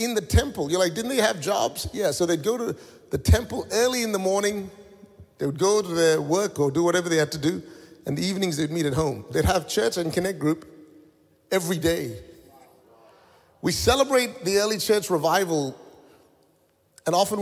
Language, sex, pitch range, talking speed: English, male, 125-180 Hz, 195 wpm